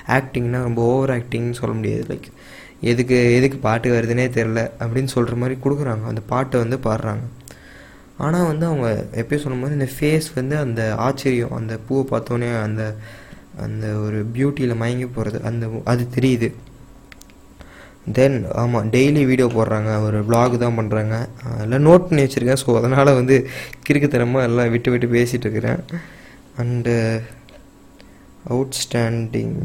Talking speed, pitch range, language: 135 wpm, 115-135 Hz, Tamil